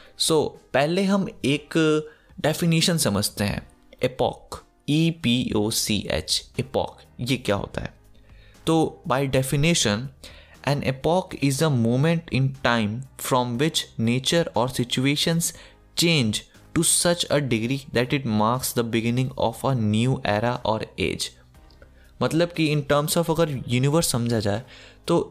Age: 20-39